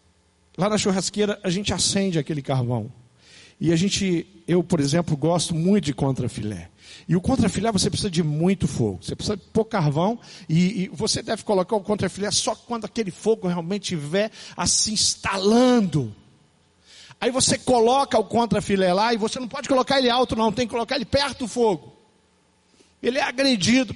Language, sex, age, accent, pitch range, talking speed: Portuguese, male, 50-69, Brazilian, 140-205 Hz, 175 wpm